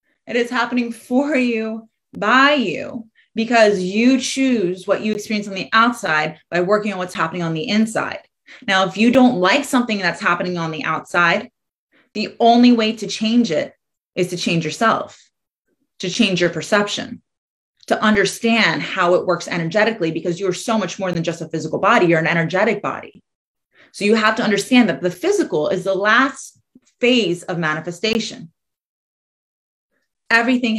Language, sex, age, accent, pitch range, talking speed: English, female, 30-49, American, 175-235 Hz, 165 wpm